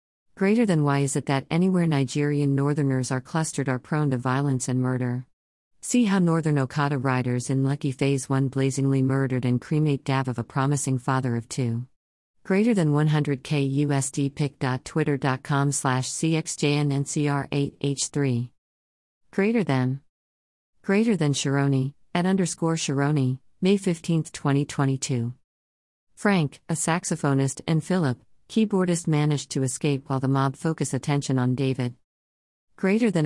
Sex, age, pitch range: female, 50-69, 130-155 Hz